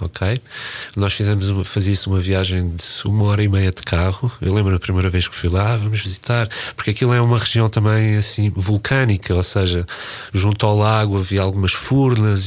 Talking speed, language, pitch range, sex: 190 wpm, Portuguese, 95-115 Hz, male